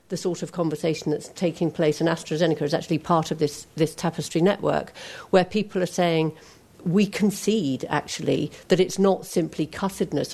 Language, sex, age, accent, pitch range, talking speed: English, female, 50-69, British, 155-185 Hz, 170 wpm